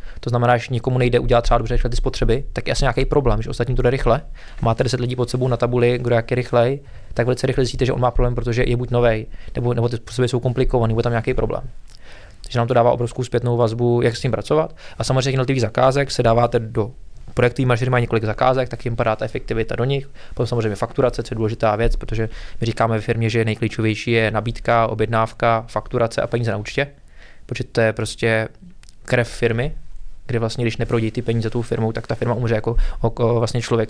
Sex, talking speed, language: male, 220 wpm, Czech